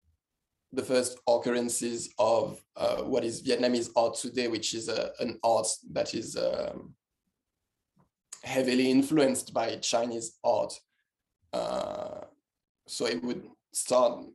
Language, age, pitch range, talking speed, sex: English, 20-39, 120-135 Hz, 115 wpm, male